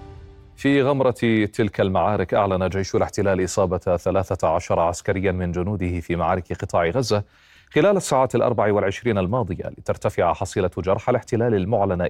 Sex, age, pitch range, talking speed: male, 30-49, 95-120 Hz, 130 wpm